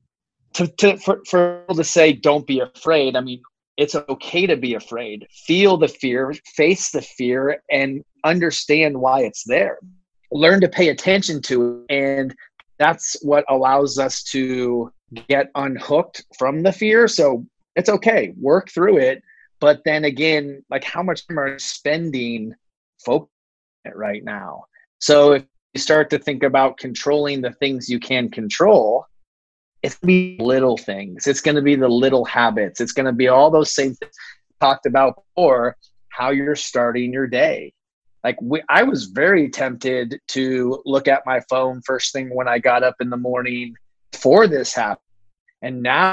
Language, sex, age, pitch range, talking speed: English, male, 30-49, 125-155 Hz, 170 wpm